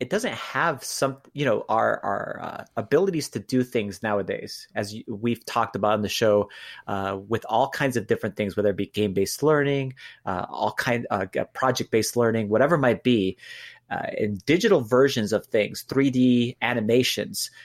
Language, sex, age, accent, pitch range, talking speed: English, male, 30-49, American, 110-130 Hz, 175 wpm